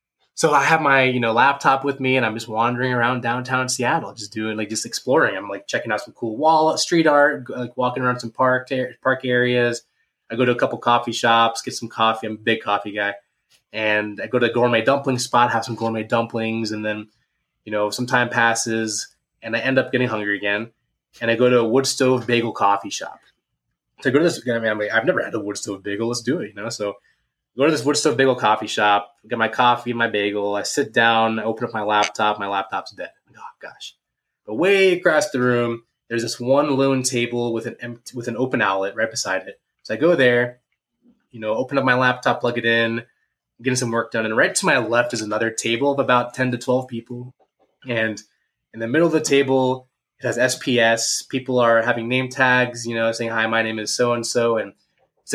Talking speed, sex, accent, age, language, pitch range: 230 wpm, male, American, 20-39, English, 110-125 Hz